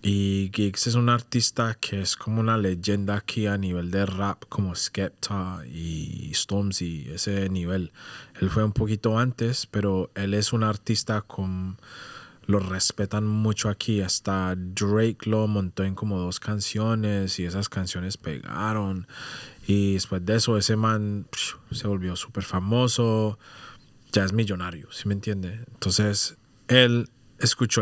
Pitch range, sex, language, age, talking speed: 95-115 Hz, male, Spanish, 20-39, 145 wpm